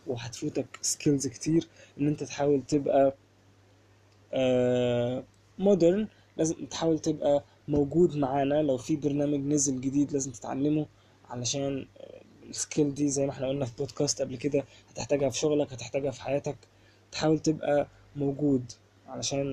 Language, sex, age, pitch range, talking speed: Arabic, male, 20-39, 115-145 Hz, 125 wpm